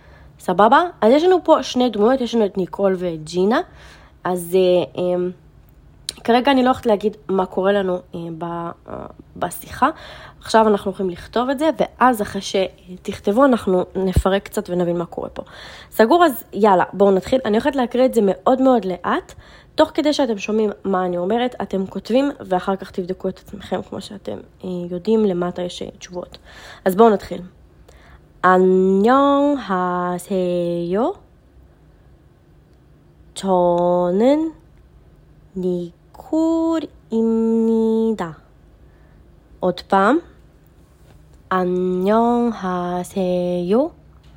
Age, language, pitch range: 20-39, Hebrew, 180-230 Hz